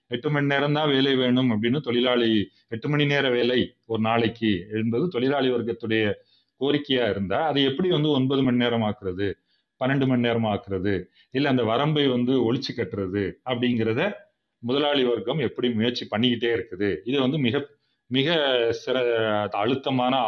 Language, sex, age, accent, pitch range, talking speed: Tamil, male, 30-49, native, 110-140 Hz, 140 wpm